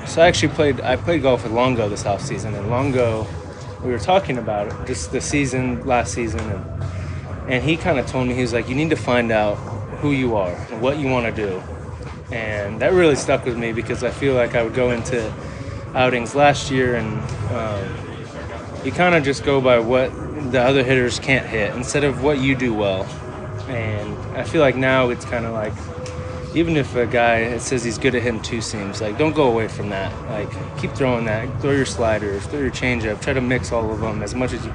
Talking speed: 225 wpm